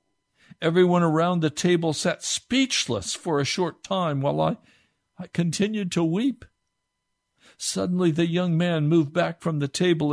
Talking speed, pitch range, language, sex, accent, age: 150 wpm, 130-165 Hz, English, male, American, 60-79